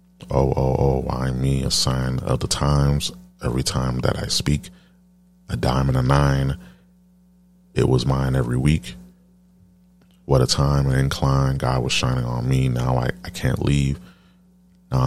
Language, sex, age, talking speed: English, male, 30-49, 165 wpm